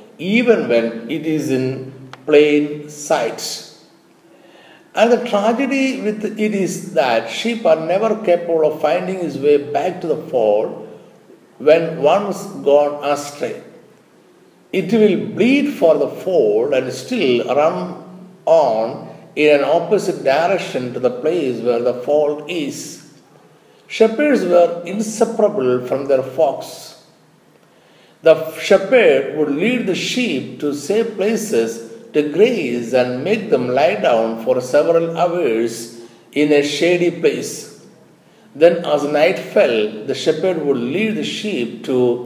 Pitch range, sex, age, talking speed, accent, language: 135-210 Hz, male, 50-69, 130 wpm, native, Malayalam